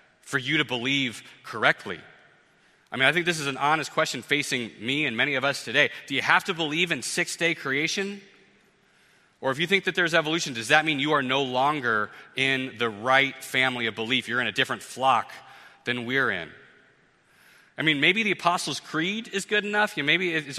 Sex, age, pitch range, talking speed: male, 30-49, 125-165 Hz, 205 wpm